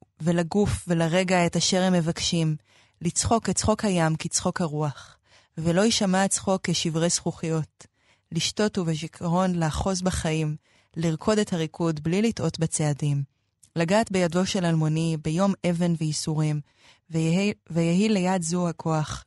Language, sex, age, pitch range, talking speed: Hebrew, female, 20-39, 160-185 Hz, 115 wpm